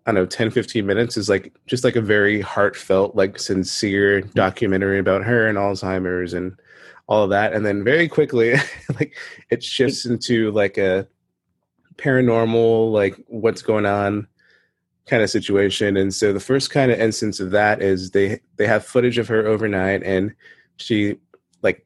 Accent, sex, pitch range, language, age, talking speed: American, male, 100-120 Hz, English, 20-39, 170 wpm